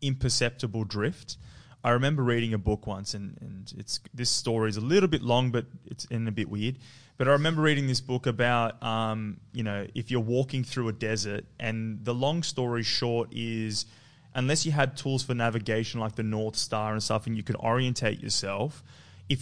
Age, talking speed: 20-39, 200 wpm